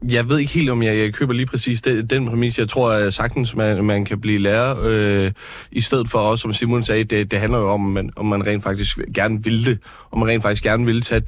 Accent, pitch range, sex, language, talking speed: native, 110-130 Hz, male, Danish, 255 wpm